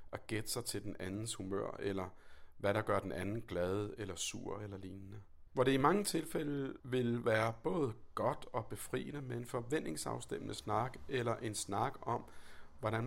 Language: Danish